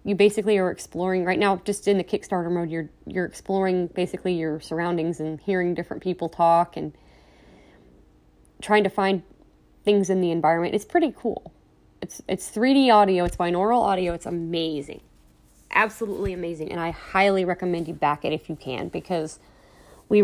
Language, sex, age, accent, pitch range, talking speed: English, female, 20-39, American, 165-210 Hz, 165 wpm